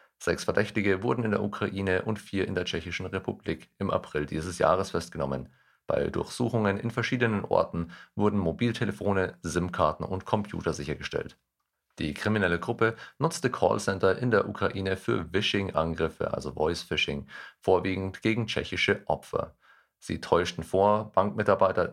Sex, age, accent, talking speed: male, 40-59, German, 135 wpm